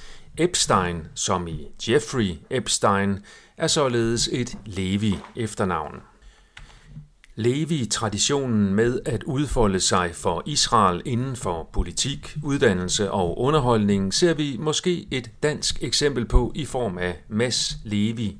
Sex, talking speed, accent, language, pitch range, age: male, 110 wpm, native, Danish, 95-125 Hz, 40-59